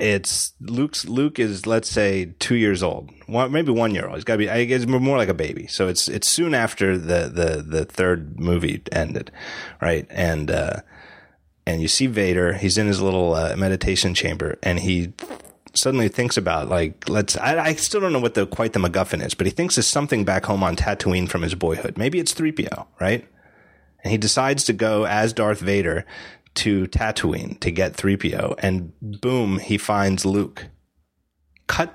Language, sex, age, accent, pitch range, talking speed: English, male, 30-49, American, 95-130 Hz, 190 wpm